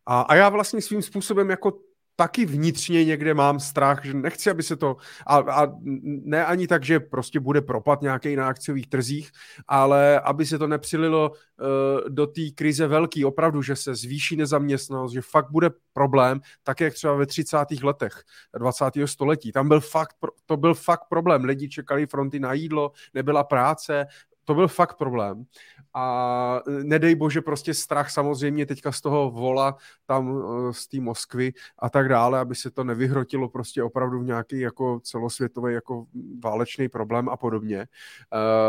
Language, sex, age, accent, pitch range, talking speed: Czech, male, 30-49, native, 130-155 Hz, 160 wpm